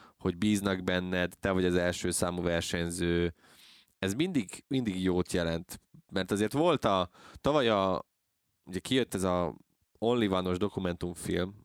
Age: 20-39